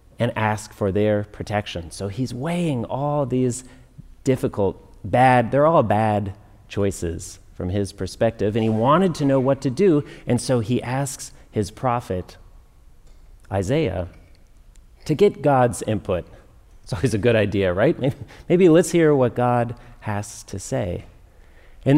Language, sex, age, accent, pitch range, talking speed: English, male, 40-59, American, 95-130 Hz, 145 wpm